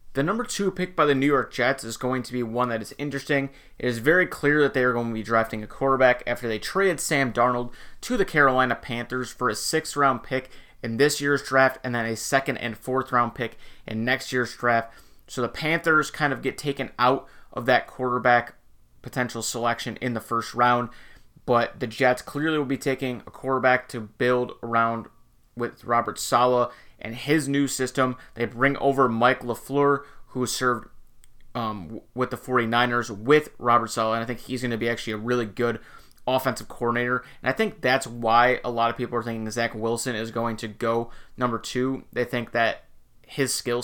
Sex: male